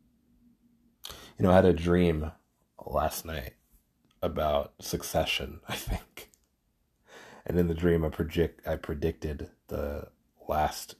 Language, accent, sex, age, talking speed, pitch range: English, American, male, 30-49, 120 wpm, 80-95 Hz